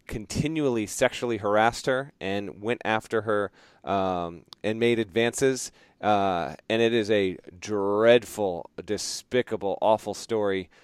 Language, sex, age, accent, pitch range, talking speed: English, male, 40-59, American, 100-120 Hz, 115 wpm